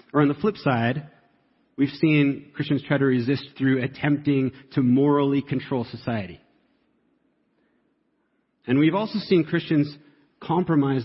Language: English